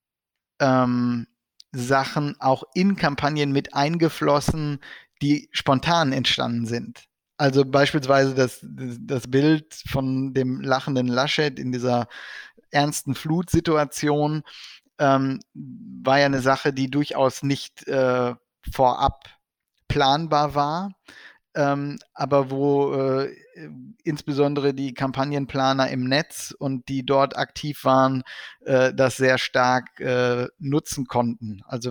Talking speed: 105 wpm